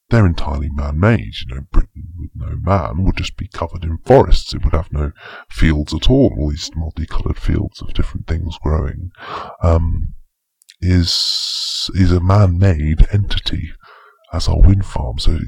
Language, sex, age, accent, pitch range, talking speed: English, female, 30-49, British, 80-95 Hz, 160 wpm